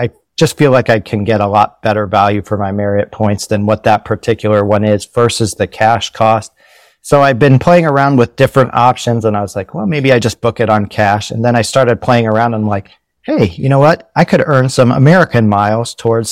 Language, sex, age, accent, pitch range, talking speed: English, male, 40-59, American, 110-130 Hz, 235 wpm